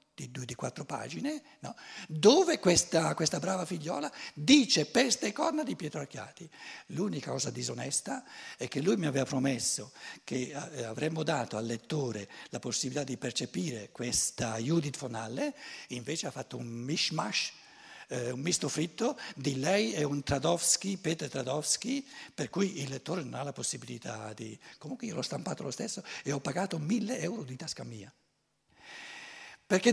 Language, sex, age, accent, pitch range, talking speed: Italian, male, 60-79, native, 140-210 Hz, 160 wpm